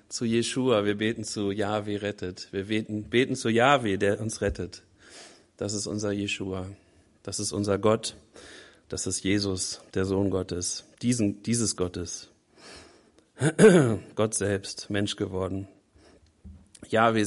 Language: German